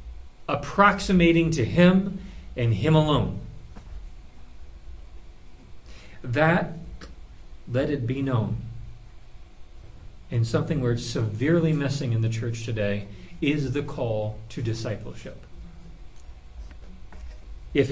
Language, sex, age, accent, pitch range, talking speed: English, male, 40-59, American, 90-145 Hz, 85 wpm